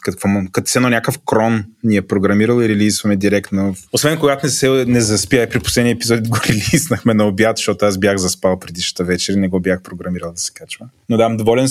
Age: 20-39